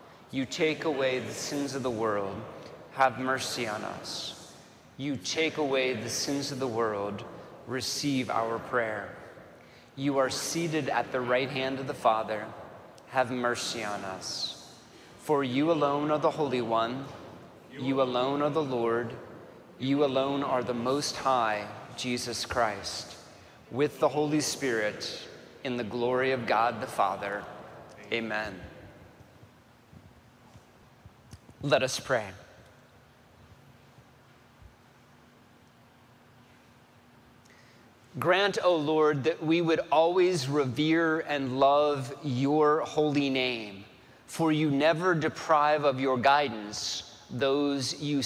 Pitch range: 120-145 Hz